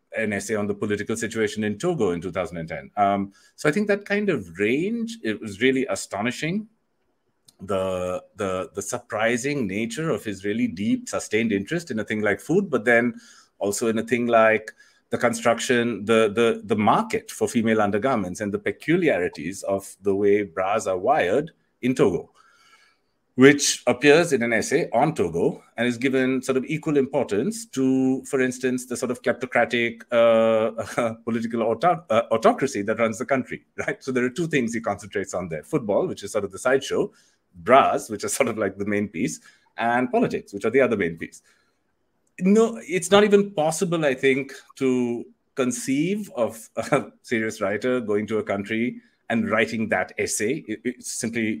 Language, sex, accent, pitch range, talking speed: English, male, Indian, 110-135 Hz, 175 wpm